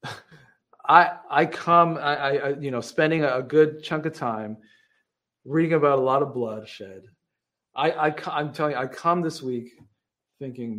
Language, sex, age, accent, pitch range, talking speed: English, male, 40-59, American, 125-175 Hz, 160 wpm